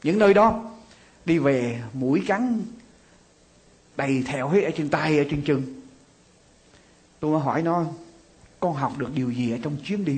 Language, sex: Vietnamese, male